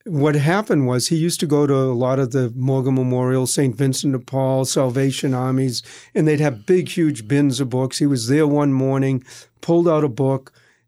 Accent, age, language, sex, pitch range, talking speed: American, 50-69, English, male, 130-155 Hz, 205 wpm